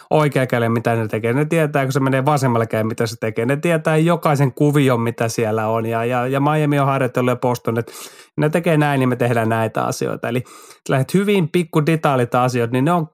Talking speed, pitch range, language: 210 wpm, 120-150 Hz, Finnish